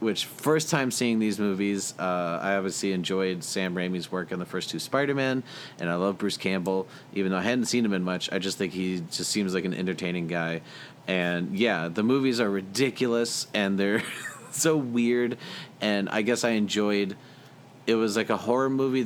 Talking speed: 195 wpm